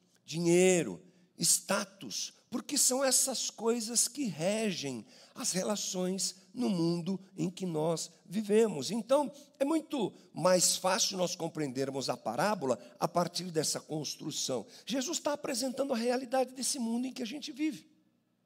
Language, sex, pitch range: Portuguese, male, 140-230 Hz